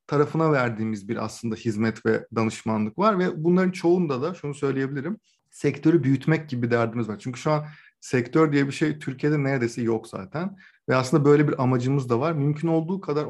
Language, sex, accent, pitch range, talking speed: Turkish, male, native, 125-160 Hz, 180 wpm